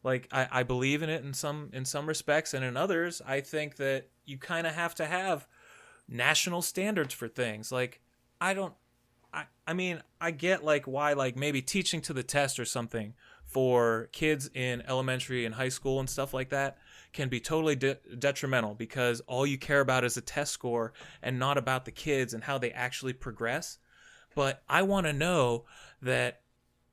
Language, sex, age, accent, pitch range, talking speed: English, male, 30-49, American, 130-165 Hz, 190 wpm